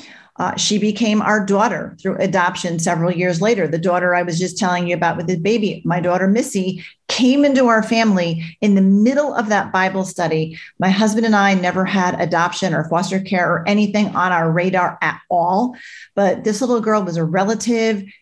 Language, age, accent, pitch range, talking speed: English, 40-59, American, 175-210 Hz, 195 wpm